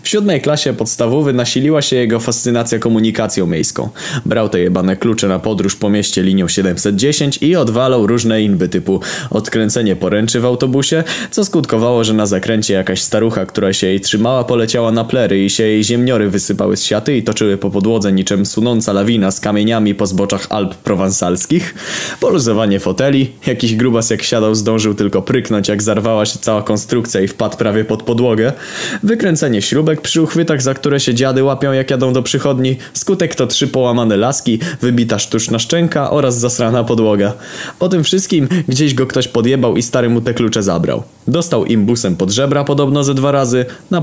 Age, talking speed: 20-39, 175 wpm